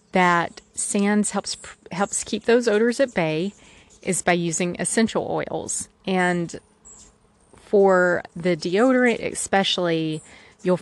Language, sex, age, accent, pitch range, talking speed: English, female, 30-49, American, 160-200 Hz, 110 wpm